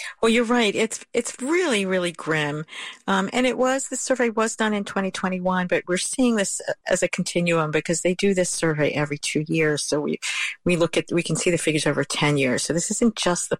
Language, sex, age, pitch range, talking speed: English, female, 50-69, 155-195 Hz, 225 wpm